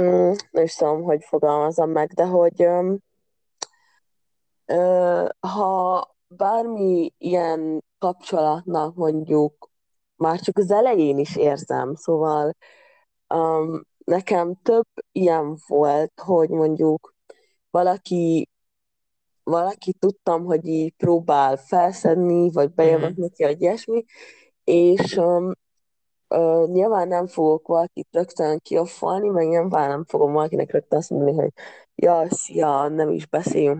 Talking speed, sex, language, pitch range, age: 105 wpm, female, Hungarian, 155-185 Hz, 20-39